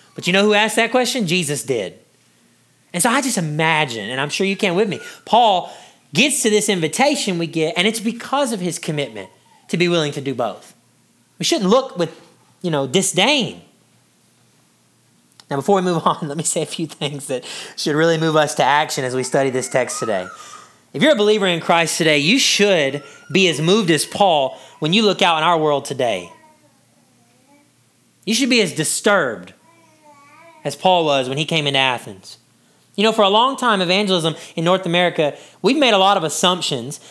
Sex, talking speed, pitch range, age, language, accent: male, 195 wpm, 155-225 Hz, 30-49, English, American